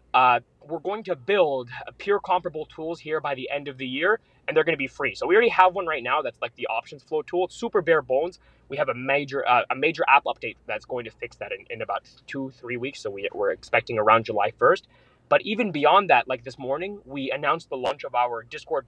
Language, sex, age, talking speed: English, male, 20-39, 250 wpm